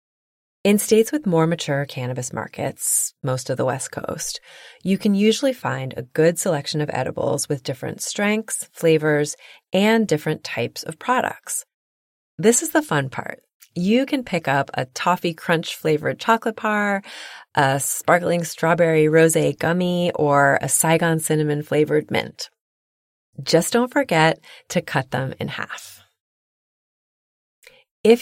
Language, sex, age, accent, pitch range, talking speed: English, female, 30-49, American, 140-190 Hz, 135 wpm